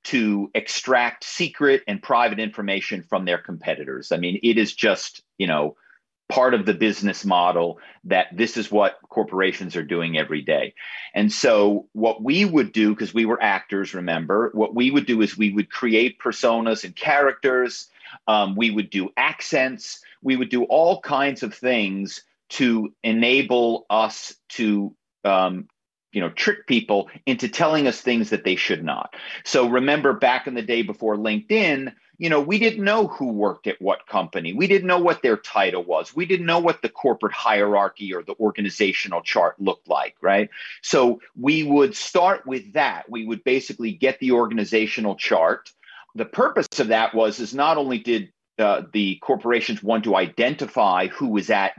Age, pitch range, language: 40-59, 105-130 Hz, English